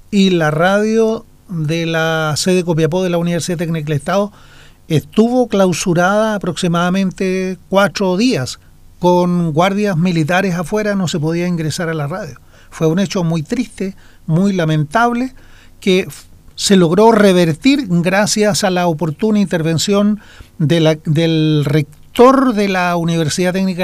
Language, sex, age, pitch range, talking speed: Spanish, male, 40-59, 160-190 Hz, 130 wpm